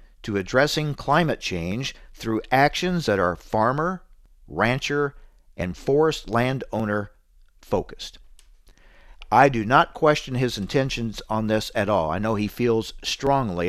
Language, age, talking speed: English, 50-69, 125 wpm